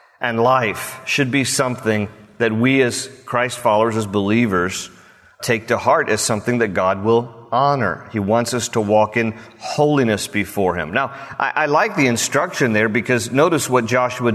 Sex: male